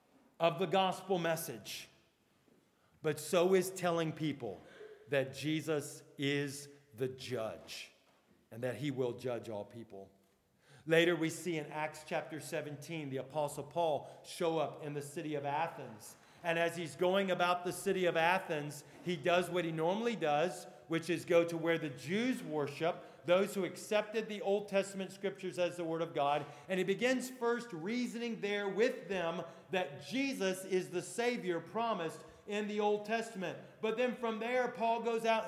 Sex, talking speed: male, 165 wpm